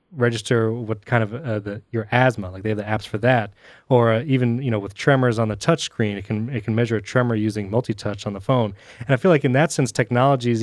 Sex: male